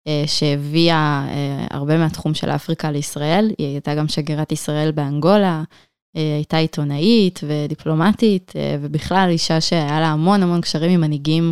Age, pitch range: 20-39, 150-170 Hz